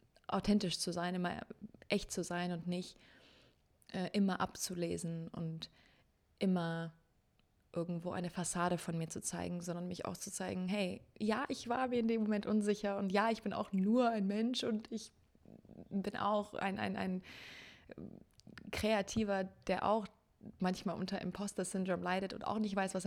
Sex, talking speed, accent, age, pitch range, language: female, 160 wpm, German, 20-39, 175-200 Hz, German